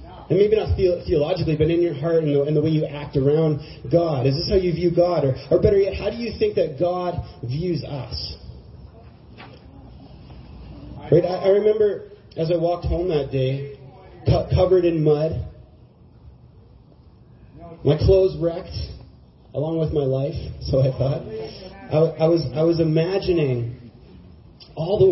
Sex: male